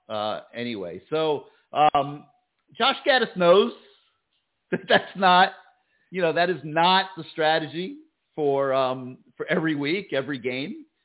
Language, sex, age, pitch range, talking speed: English, male, 50-69, 115-160 Hz, 130 wpm